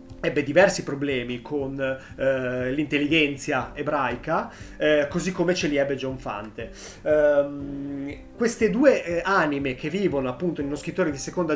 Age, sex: 30-49, male